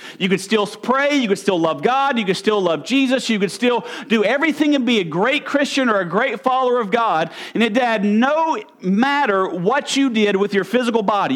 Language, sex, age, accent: English, male, 40-59, American